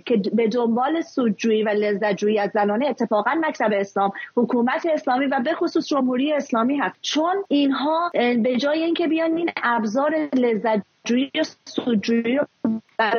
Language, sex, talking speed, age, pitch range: English, female, 140 wpm, 30-49, 210-285 Hz